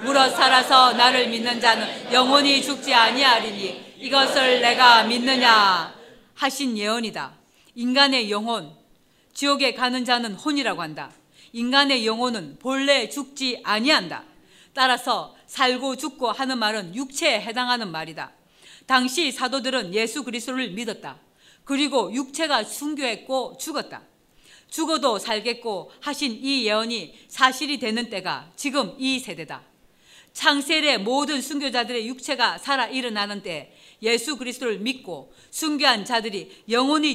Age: 40-59